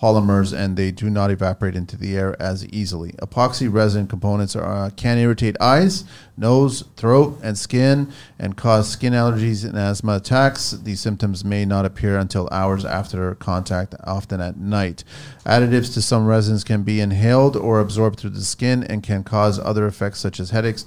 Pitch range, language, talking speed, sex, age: 95-115 Hz, English, 180 wpm, male, 40-59